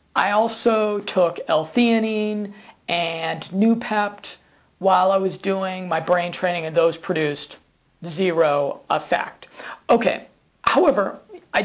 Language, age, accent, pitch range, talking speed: English, 40-59, American, 170-205 Hz, 110 wpm